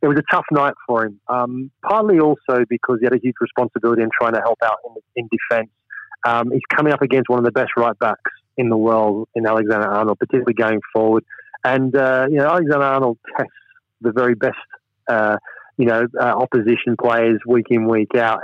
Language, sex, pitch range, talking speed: English, male, 115-130 Hz, 210 wpm